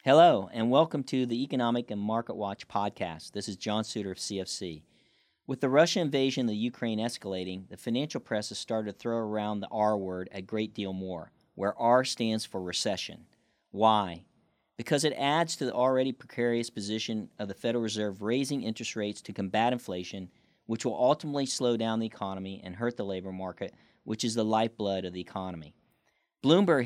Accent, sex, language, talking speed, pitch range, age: American, male, English, 185 wpm, 100-125 Hz, 40-59